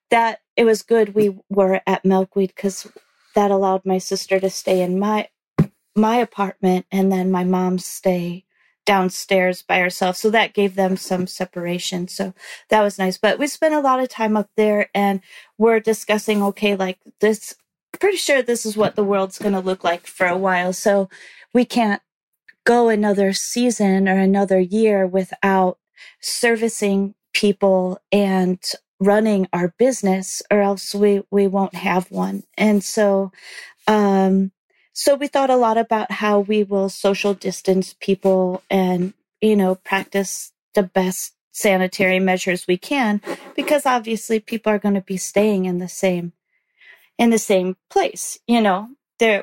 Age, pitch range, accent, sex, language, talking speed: 40-59, 185-215 Hz, American, female, English, 160 wpm